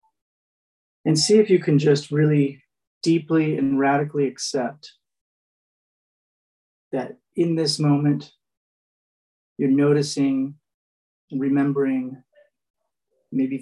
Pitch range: 135-155 Hz